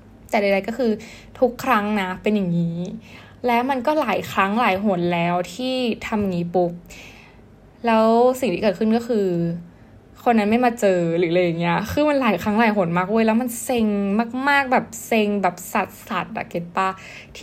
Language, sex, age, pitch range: Thai, female, 10-29, 180-235 Hz